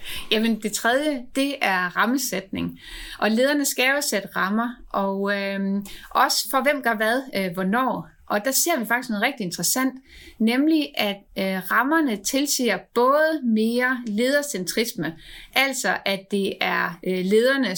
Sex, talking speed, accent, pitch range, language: female, 130 wpm, native, 195-255 Hz, Danish